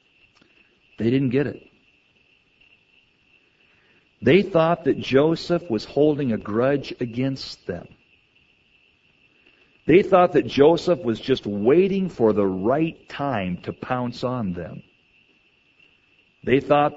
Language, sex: English, male